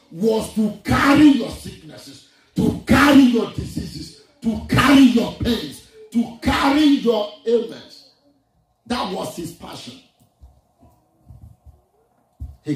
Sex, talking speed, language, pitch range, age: male, 105 wpm, English, 190-250 Hz, 50-69